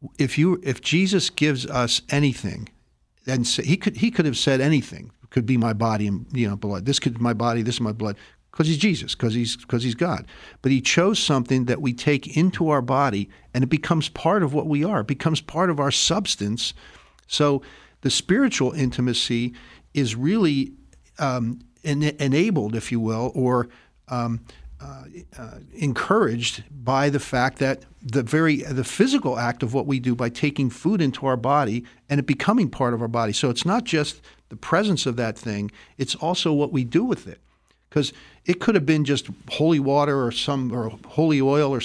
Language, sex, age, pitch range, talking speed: English, male, 50-69, 120-150 Hz, 200 wpm